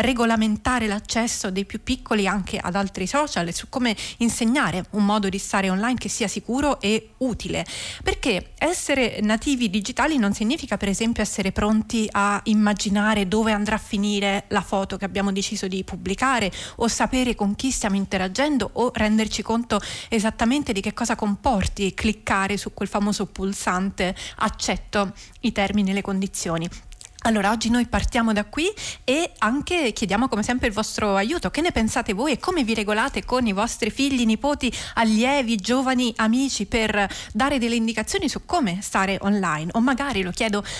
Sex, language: female, Italian